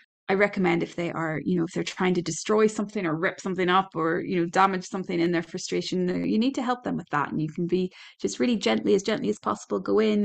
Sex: female